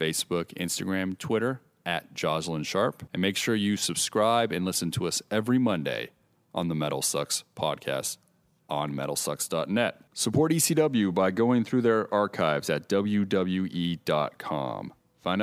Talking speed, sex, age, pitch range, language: 130 wpm, male, 30-49, 85-110 Hz, English